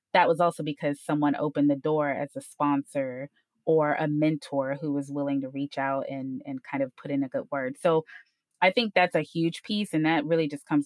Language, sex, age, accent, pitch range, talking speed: English, female, 20-39, American, 145-175 Hz, 225 wpm